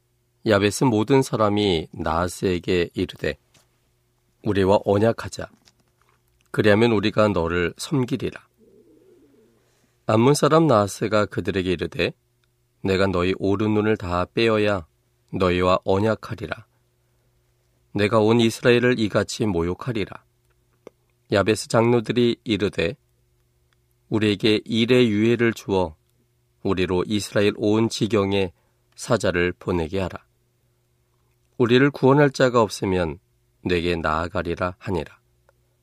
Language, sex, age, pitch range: Korean, male, 40-59, 95-120 Hz